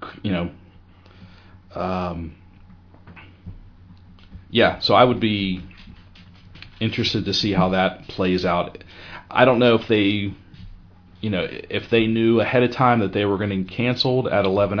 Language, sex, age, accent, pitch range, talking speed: English, male, 40-59, American, 90-105 Hz, 140 wpm